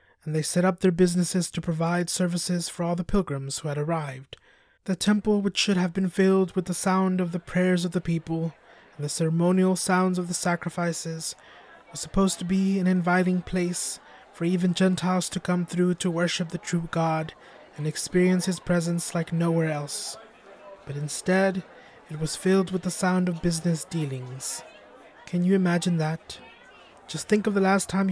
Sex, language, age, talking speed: male, English, 20-39, 180 wpm